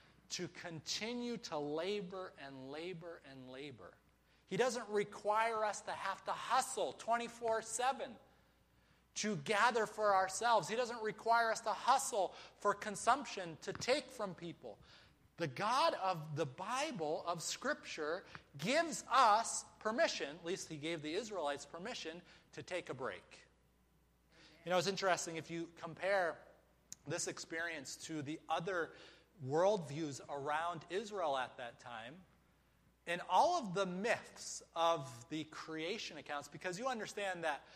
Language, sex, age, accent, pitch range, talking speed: English, male, 30-49, American, 150-205 Hz, 135 wpm